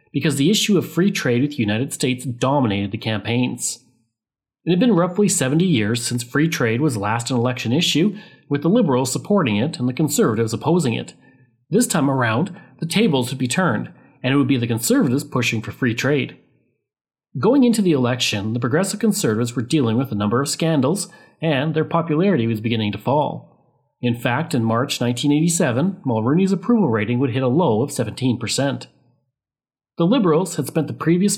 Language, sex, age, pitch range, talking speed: English, male, 40-59, 120-165 Hz, 185 wpm